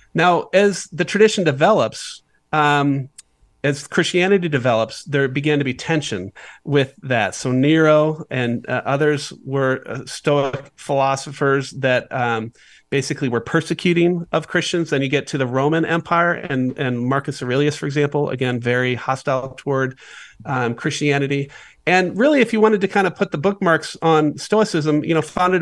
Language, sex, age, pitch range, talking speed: English, male, 40-59, 135-165 Hz, 155 wpm